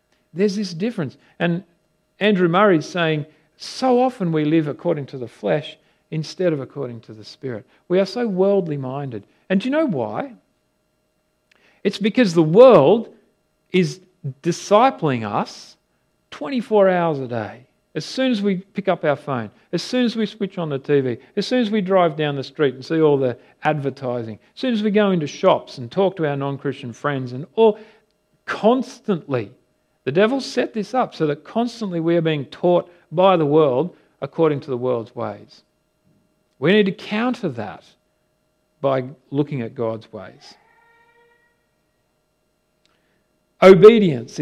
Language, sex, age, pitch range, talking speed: English, male, 50-69, 135-205 Hz, 160 wpm